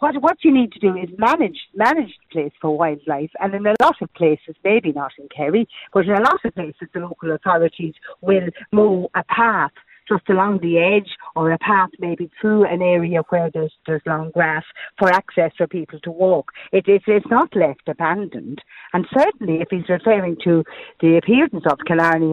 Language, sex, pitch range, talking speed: English, female, 160-205 Hz, 200 wpm